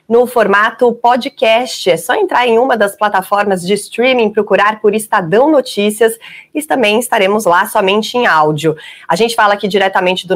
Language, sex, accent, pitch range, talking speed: Portuguese, female, Brazilian, 190-235 Hz, 170 wpm